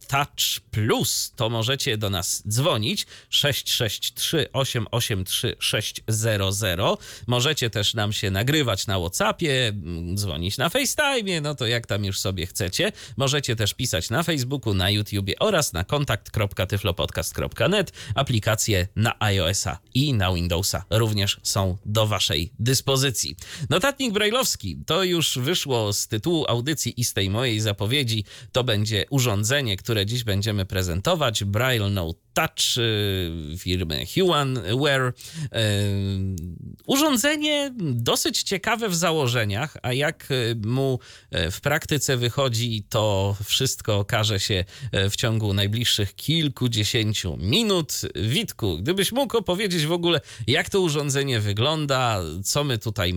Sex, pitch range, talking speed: male, 100-140 Hz, 120 wpm